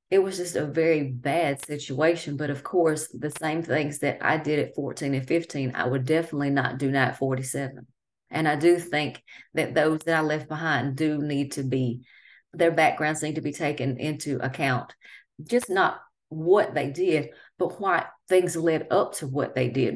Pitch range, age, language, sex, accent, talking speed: 135-160 Hz, 30-49, English, female, American, 190 wpm